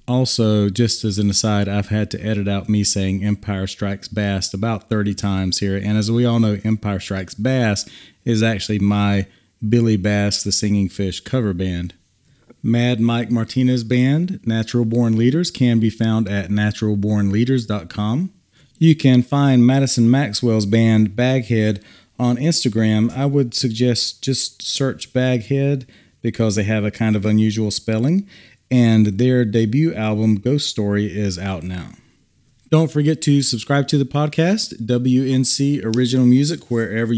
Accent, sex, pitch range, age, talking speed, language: American, male, 105-130 Hz, 40-59, 150 wpm, English